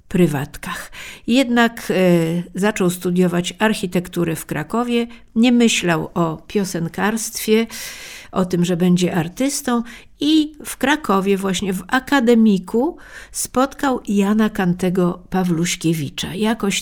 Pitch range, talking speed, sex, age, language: 175-225 Hz, 95 wpm, female, 50-69, Polish